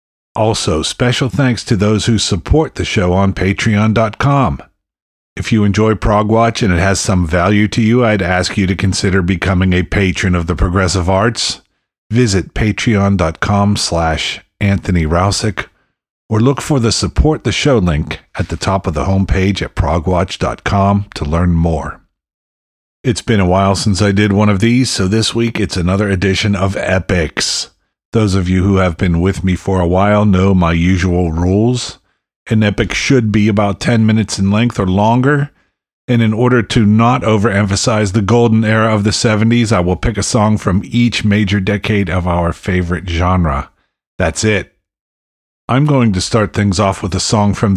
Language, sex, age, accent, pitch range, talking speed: English, male, 50-69, American, 90-110 Hz, 175 wpm